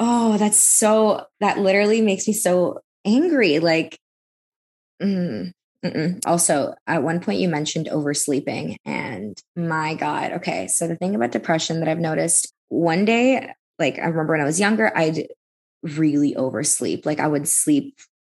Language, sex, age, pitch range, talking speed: English, female, 20-39, 150-180 Hz, 160 wpm